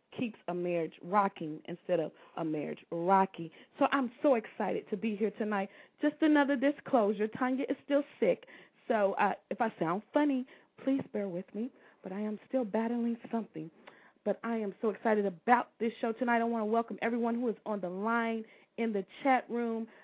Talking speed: 190 wpm